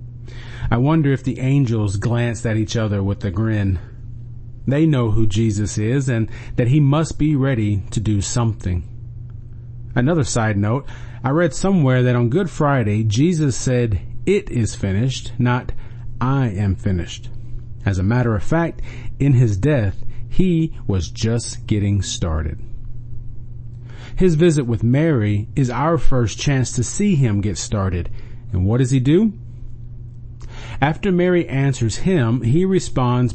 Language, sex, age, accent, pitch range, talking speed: English, male, 40-59, American, 115-130 Hz, 150 wpm